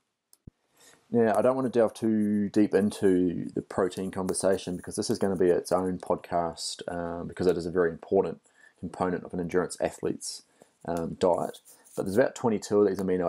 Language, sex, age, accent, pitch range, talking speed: English, male, 30-49, Australian, 90-100 Hz, 190 wpm